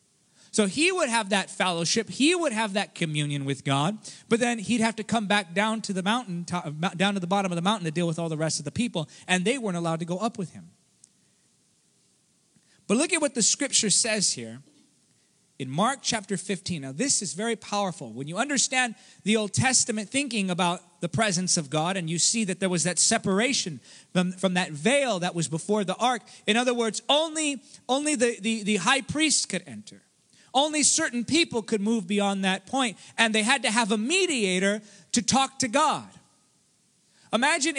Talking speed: 200 wpm